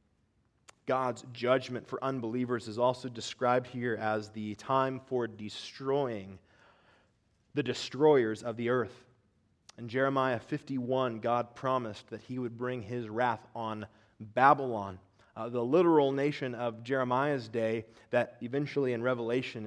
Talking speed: 130 wpm